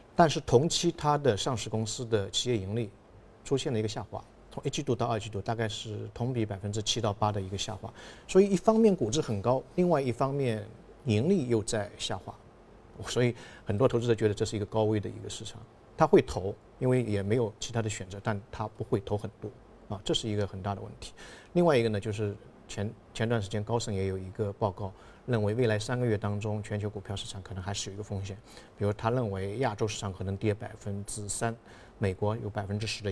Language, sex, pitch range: Chinese, male, 105-120 Hz